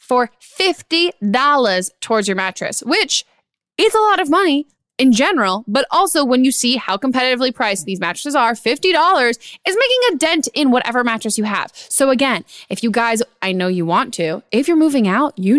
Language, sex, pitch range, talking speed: English, female, 195-275 Hz, 190 wpm